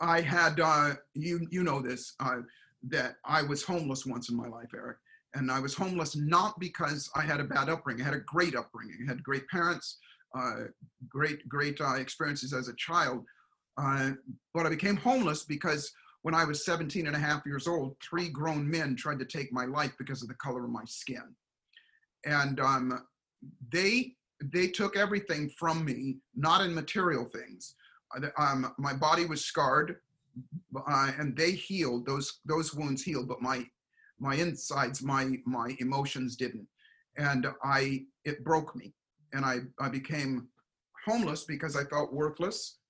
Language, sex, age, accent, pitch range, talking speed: English, male, 50-69, American, 135-170 Hz, 170 wpm